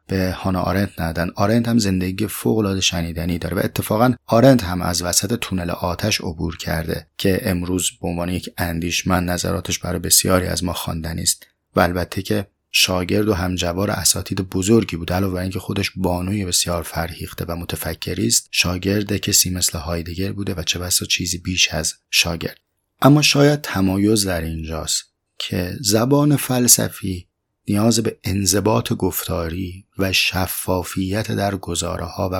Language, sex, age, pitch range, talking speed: Persian, male, 30-49, 90-105 Hz, 150 wpm